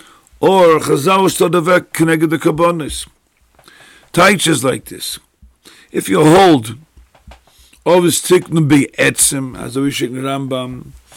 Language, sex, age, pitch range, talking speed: English, male, 50-69, 150-185 Hz, 105 wpm